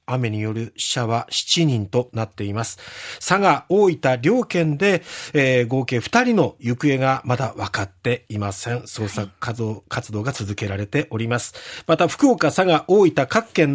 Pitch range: 125-200 Hz